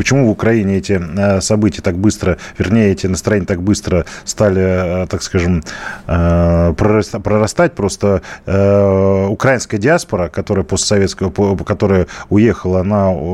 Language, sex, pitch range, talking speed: Russian, male, 95-115 Hz, 100 wpm